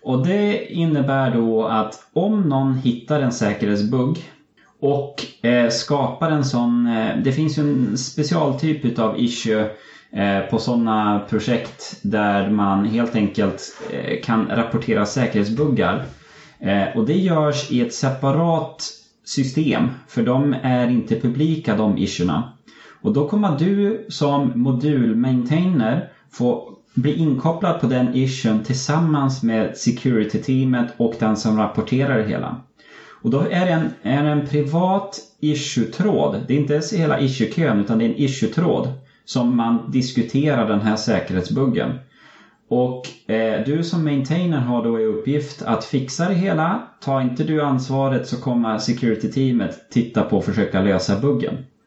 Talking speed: 140 wpm